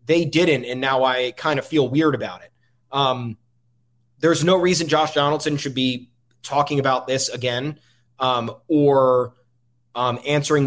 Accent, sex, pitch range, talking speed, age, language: American, male, 120-145 Hz, 150 wpm, 20-39, English